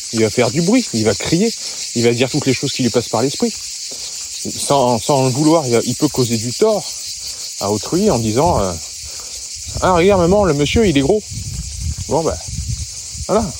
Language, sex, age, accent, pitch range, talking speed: French, male, 30-49, French, 100-150 Hz, 195 wpm